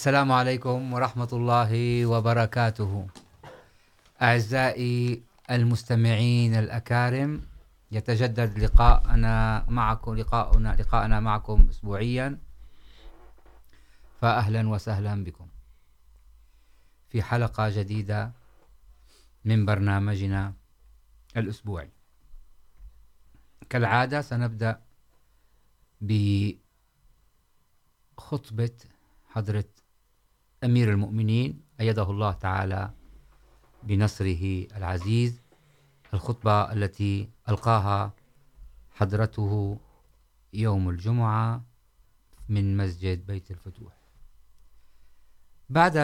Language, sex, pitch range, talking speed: Urdu, male, 100-120 Hz, 60 wpm